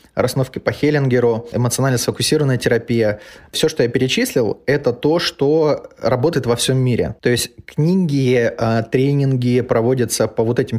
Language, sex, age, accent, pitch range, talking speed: Russian, male, 20-39, native, 115-135 Hz, 140 wpm